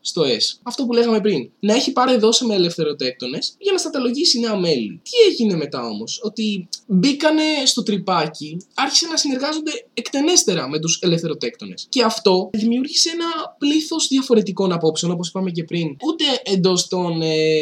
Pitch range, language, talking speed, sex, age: 155-250 Hz, Greek, 160 wpm, male, 20-39